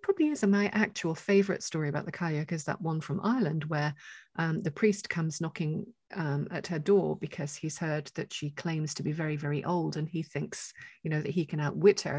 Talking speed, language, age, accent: 220 wpm, English, 40-59, British